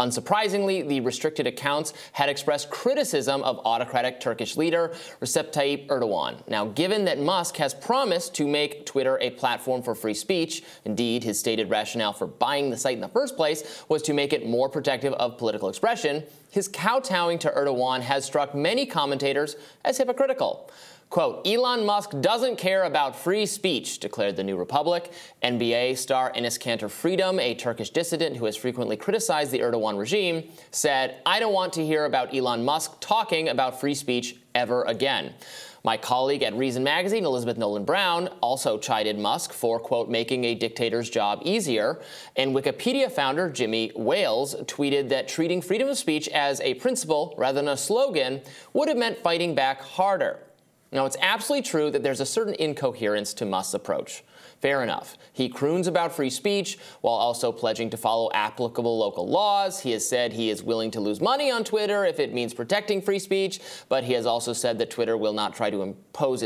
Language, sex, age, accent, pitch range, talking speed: English, male, 30-49, American, 120-185 Hz, 180 wpm